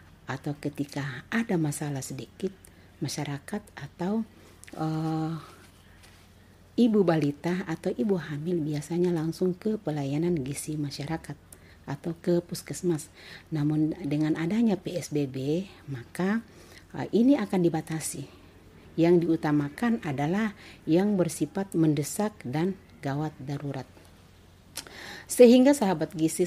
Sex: female